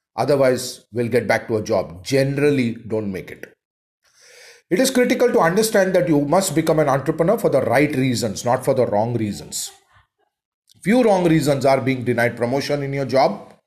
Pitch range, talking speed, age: 125-160 Hz, 180 wpm, 40-59